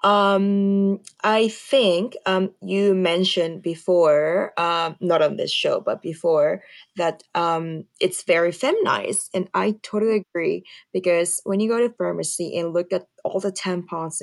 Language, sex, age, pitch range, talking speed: English, female, 20-39, 170-215 Hz, 150 wpm